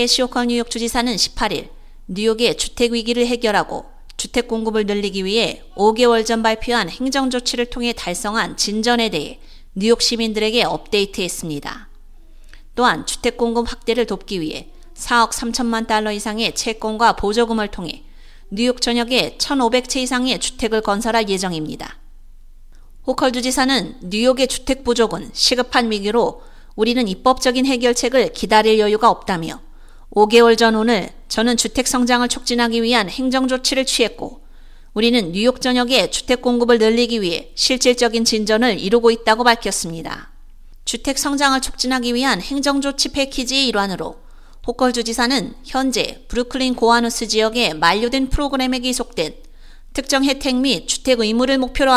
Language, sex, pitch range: Korean, female, 220-255 Hz